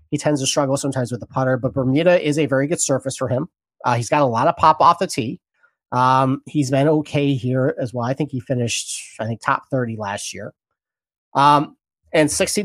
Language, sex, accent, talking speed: English, male, American, 225 wpm